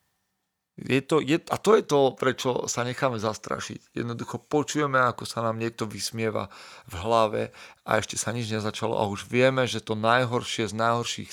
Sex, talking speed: male, 175 wpm